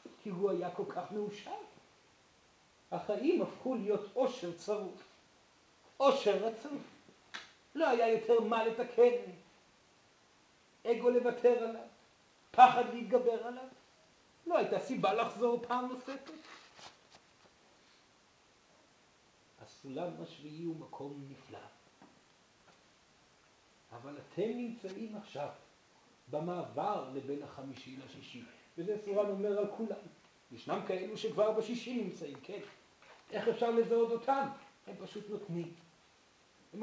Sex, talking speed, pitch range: male, 100 wpm, 200-265 Hz